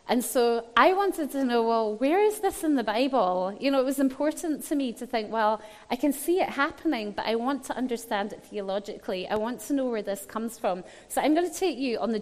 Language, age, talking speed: English, 30-49, 250 wpm